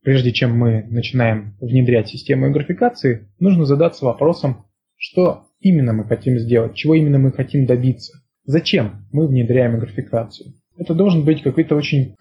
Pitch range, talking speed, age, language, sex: 120-150 Hz, 145 wpm, 20-39, Russian, male